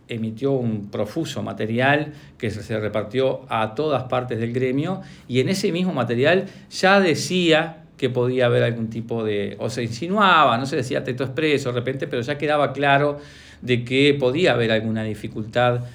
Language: Spanish